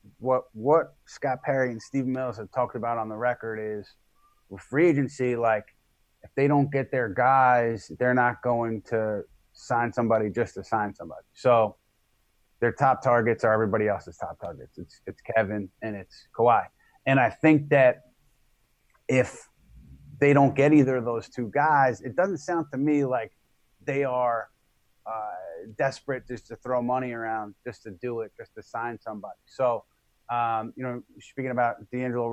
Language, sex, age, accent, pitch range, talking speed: English, male, 30-49, American, 110-130 Hz, 170 wpm